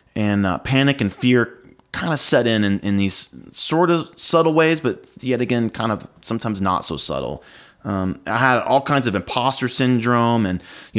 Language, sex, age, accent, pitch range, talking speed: English, male, 30-49, American, 95-120 Hz, 190 wpm